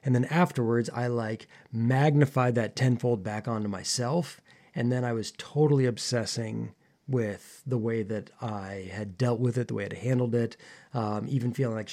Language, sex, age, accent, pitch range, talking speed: English, male, 20-39, American, 115-140 Hz, 180 wpm